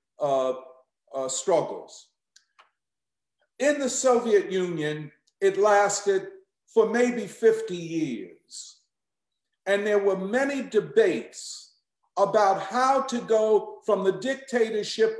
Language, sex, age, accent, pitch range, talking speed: English, male, 50-69, American, 185-250 Hz, 100 wpm